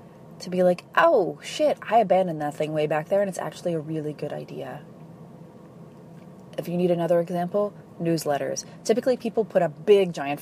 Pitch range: 160-185 Hz